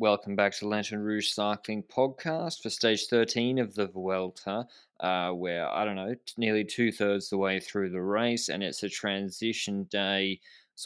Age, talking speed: 20-39, 175 wpm